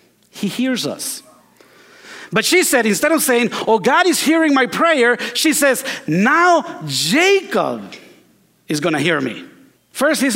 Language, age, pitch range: English, 50-69, 210-305 Hz